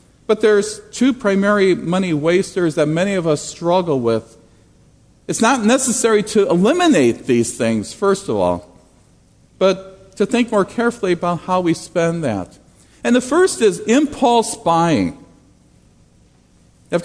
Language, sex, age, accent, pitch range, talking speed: English, male, 50-69, American, 155-220 Hz, 135 wpm